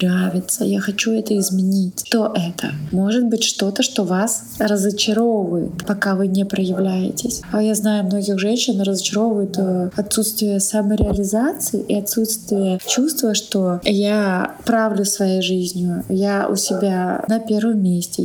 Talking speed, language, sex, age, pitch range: 130 wpm, Russian, female, 20-39, 195-230 Hz